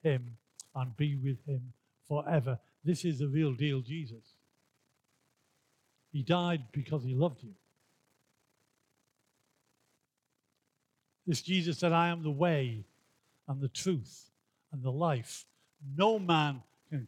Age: 60-79